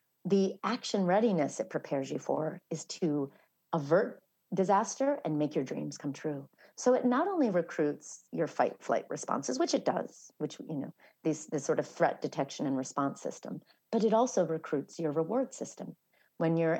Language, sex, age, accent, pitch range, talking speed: English, female, 40-59, American, 150-195 Hz, 175 wpm